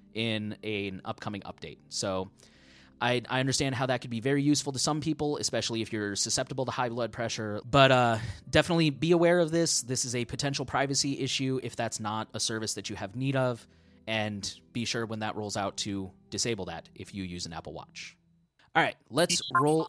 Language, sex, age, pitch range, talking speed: English, male, 20-39, 110-145 Hz, 205 wpm